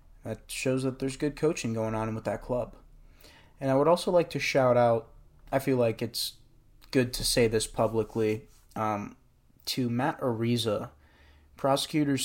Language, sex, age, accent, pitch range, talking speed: English, male, 20-39, American, 105-130 Hz, 160 wpm